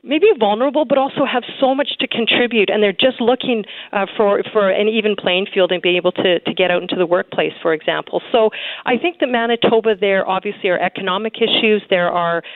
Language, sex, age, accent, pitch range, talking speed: English, female, 40-59, American, 195-240 Hz, 210 wpm